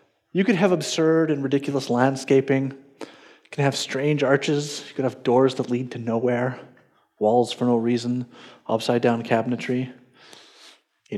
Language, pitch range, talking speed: English, 135-180 Hz, 150 wpm